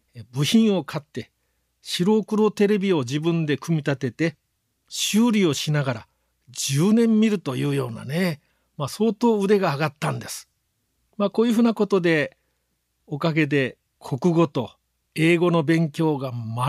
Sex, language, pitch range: male, Japanese, 130-175 Hz